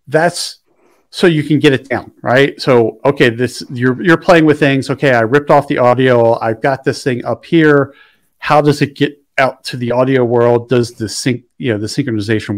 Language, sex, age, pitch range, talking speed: English, male, 50-69, 120-150 Hz, 210 wpm